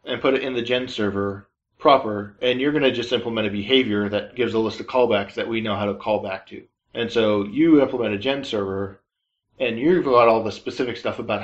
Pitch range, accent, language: 105-120 Hz, American, English